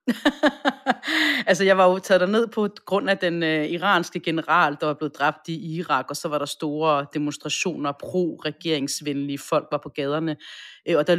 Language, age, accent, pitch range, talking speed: Danish, 30-49, native, 155-205 Hz, 175 wpm